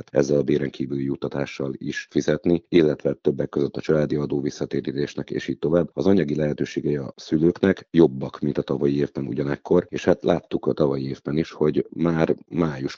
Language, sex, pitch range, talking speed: Hungarian, male, 70-80 Hz, 170 wpm